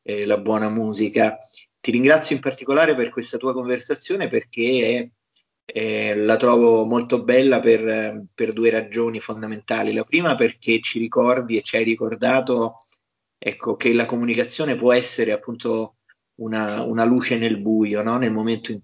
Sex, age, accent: male, 30-49, native